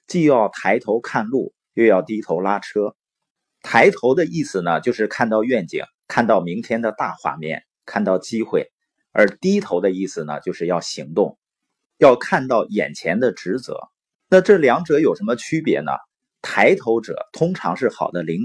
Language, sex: Chinese, male